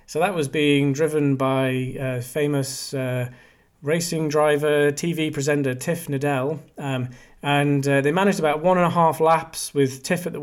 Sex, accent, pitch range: male, British, 135-160 Hz